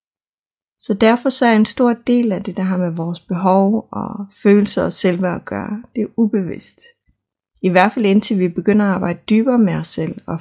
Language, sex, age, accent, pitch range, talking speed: Danish, female, 30-49, native, 180-220 Hz, 210 wpm